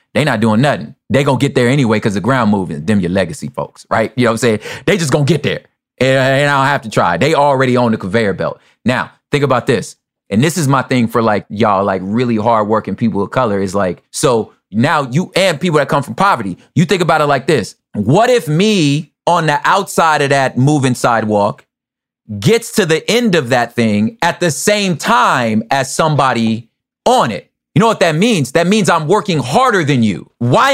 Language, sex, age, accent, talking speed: English, male, 30-49, American, 225 wpm